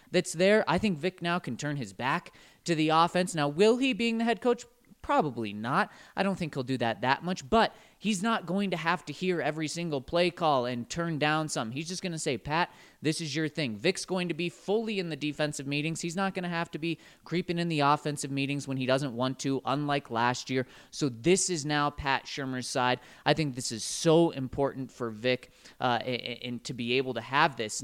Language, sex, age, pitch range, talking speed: English, male, 30-49, 130-185 Hz, 230 wpm